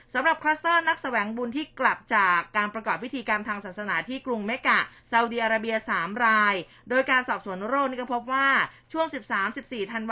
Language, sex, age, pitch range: Thai, female, 20-39, 205-260 Hz